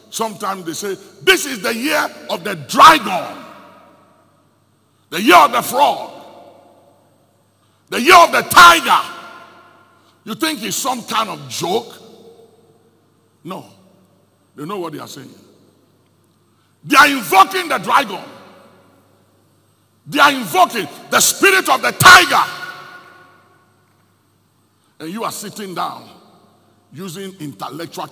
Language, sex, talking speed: English, male, 115 wpm